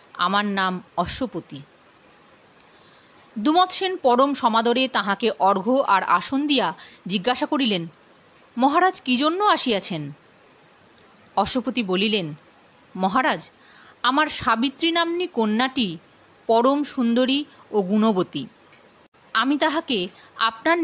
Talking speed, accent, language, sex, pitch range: 90 wpm, native, Bengali, female, 195-300 Hz